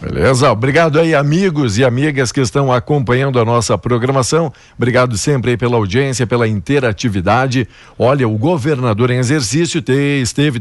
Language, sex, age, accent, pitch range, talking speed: Portuguese, male, 60-79, Brazilian, 120-145 Hz, 140 wpm